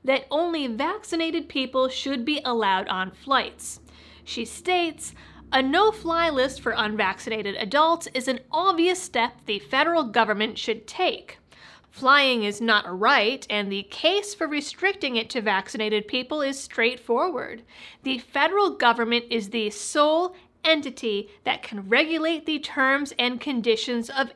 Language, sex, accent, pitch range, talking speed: English, female, American, 235-325 Hz, 140 wpm